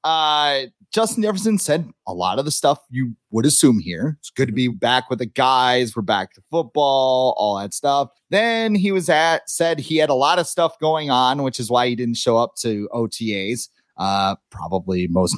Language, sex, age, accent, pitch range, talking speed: English, male, 30-49, American, 115-170 Hz, 205 wpm